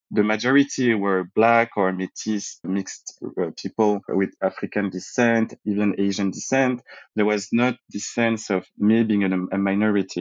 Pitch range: 100-115 Hz